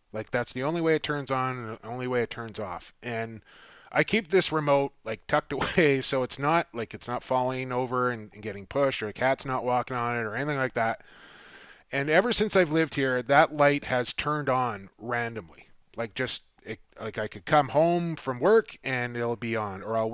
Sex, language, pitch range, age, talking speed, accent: male, English, 115-150 Hz, 20-39, 220 wpm, American